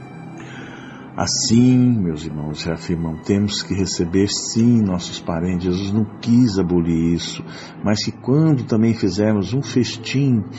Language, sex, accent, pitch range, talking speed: Portuguese, male, Brazilian, 95-125 Hz, 130 wpm